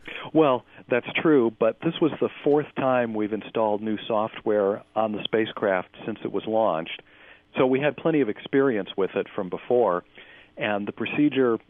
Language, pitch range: English, 95-115 Hz